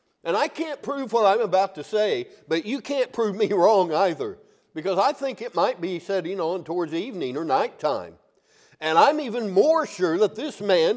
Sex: male